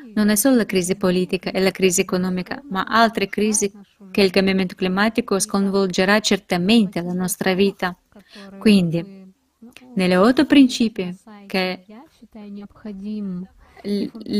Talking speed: 115 wpm